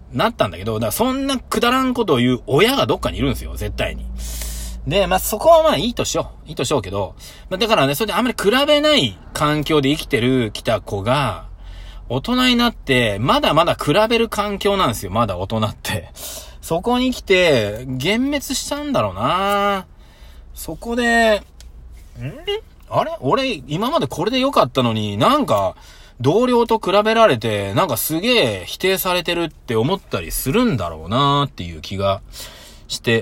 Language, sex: Japanese, male